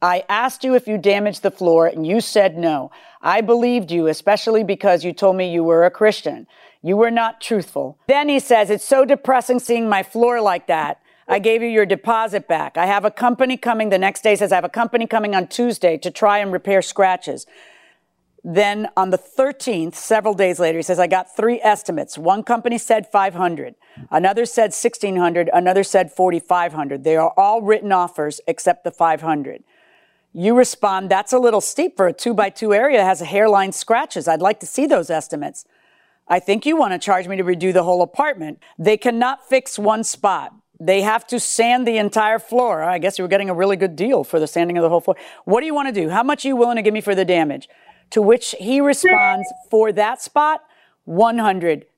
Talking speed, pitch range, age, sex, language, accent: 210 wpm, 180-235 Hz, 50-69, female, English, American